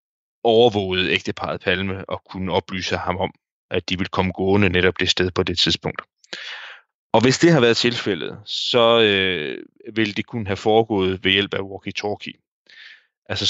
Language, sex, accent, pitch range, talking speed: Danish, male, native, 95-115 Hz, 165 wpm